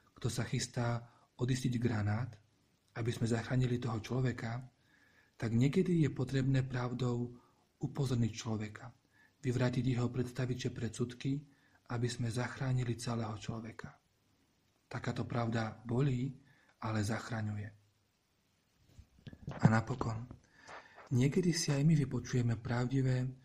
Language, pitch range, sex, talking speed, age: Slovak, 115-130 Hz, male, 100 wpm, 40-59